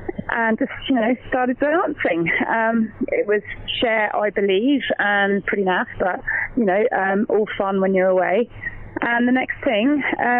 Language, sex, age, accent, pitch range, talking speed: English, female, 20-39, British, 180-225 Hz, 165 wpm